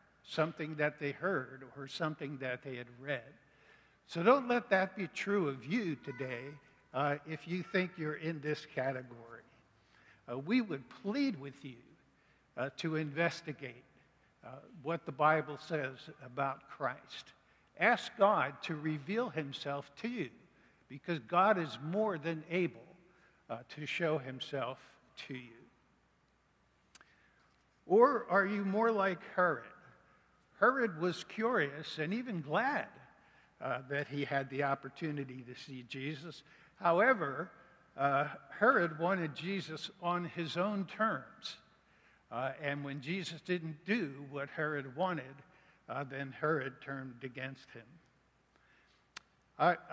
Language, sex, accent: English, male, American